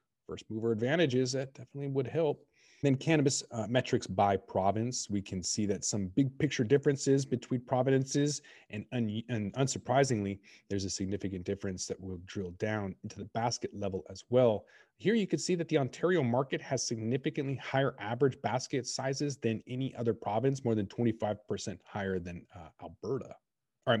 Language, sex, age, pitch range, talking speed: English, male, 30-49, 100-135 Hz, 170 wpm